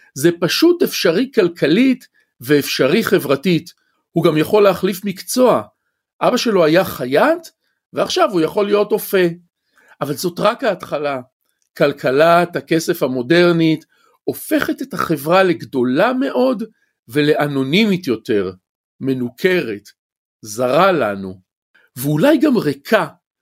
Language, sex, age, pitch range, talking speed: Hebrew, male, 50-69, 160-230 Hz, 100 wpm